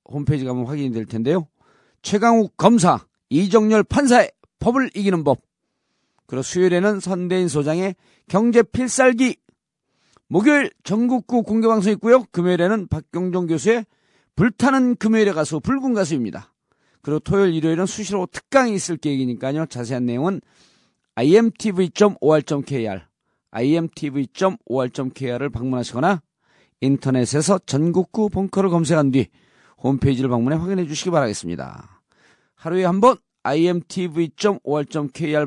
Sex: male